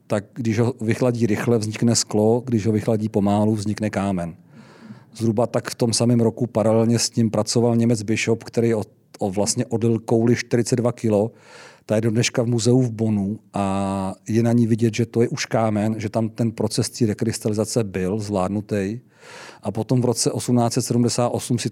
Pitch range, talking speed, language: 105-120 Hz, 165 wpm, Czech